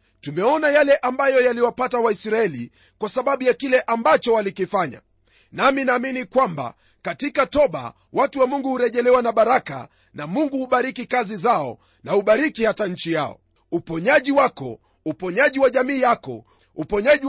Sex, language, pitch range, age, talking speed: male, Swahili, 185-265 Hz, 40-59, 135 wpm